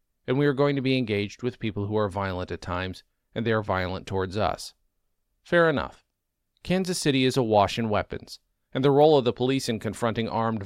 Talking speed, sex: 210 wpm, male